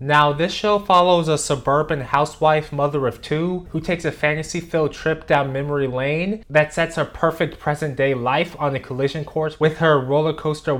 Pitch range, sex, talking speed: 130-155 Hz, male, 170 wpm